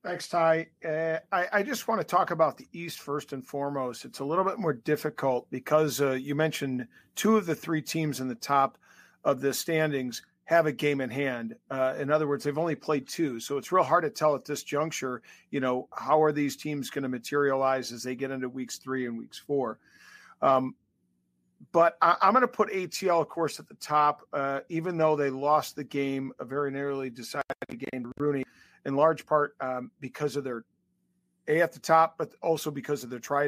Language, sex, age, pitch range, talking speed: English, male, 40-59, 130-155 Hz, 210 wpm